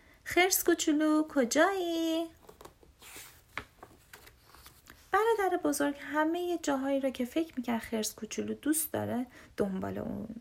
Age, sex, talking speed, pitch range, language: 30-49, female, 100 wpm, 225-310 Hz, Persian